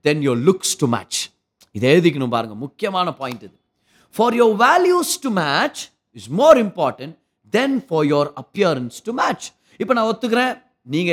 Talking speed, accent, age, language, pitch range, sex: 145 wpm, native, 30-49, Tamil, 160-235 Hz, male